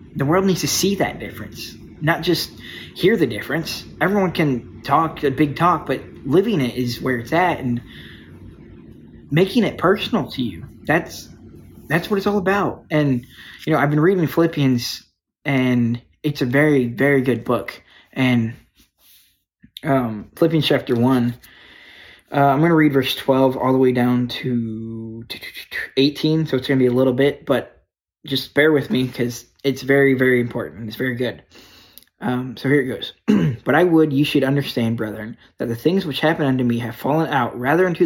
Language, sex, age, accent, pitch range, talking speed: English, male, 20-39, American, 125-155 Hz, 180 wpm